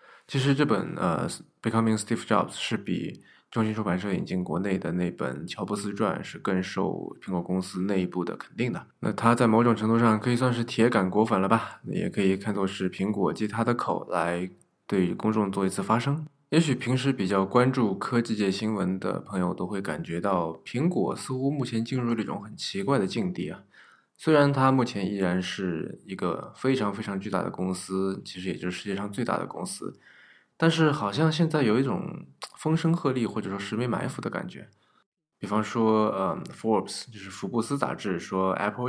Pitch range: 95-125 Hz